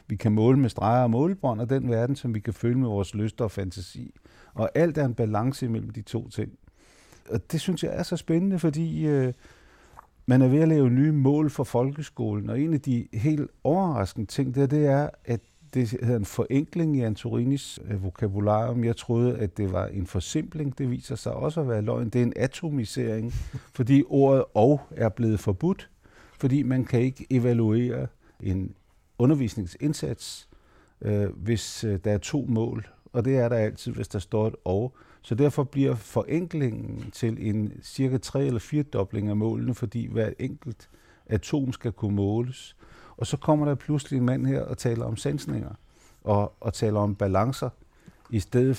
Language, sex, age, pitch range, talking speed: Danish, male, 50-69, 110-140 Hz, 185 wpm